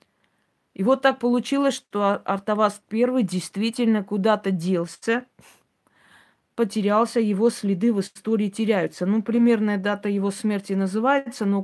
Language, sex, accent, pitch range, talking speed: Russian, female, native, 185-225 Hz, 120 wpm